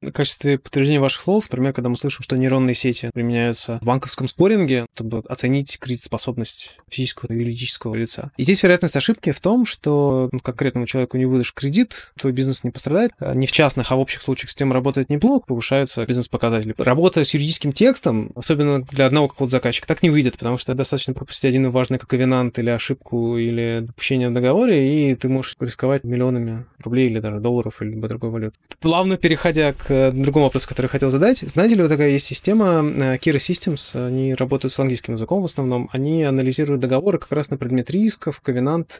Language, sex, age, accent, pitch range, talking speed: Russian, male, 20-39, native, 125-145 Hz, 195 wpm